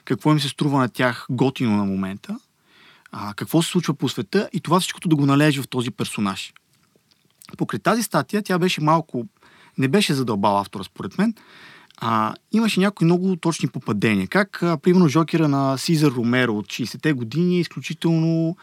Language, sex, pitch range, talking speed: Bulgarian, male, 140-180 Hz, 175 wpm